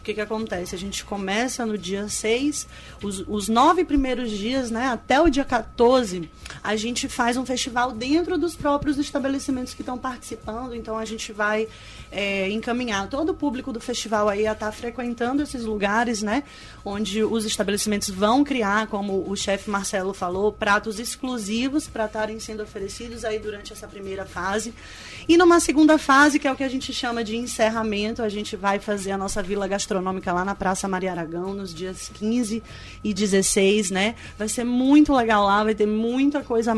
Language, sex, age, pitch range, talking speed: Portuguese, female, 20-39, 200-240 Hz, 185 wpm